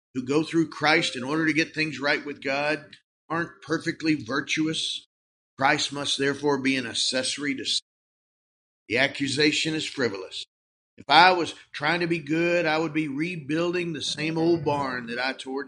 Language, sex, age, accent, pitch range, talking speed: English, male, 50-69, American, 135-170 Hz, 170 wpm